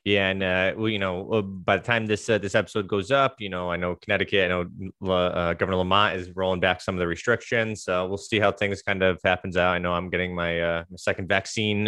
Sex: male